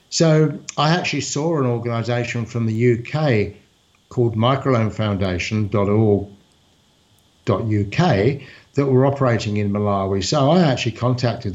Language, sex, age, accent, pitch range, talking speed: English, male, 60-79, British, 105-135 Hz, 105 wpm